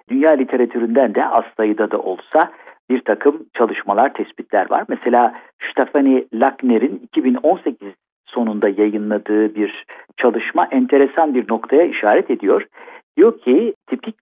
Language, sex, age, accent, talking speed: Turkish, male, 50-69, native, 115 wpm